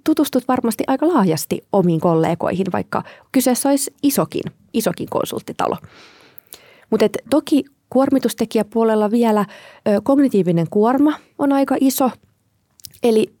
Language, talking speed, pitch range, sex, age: Finnish, 110 wpm, 170-250 Hz, female, 30-49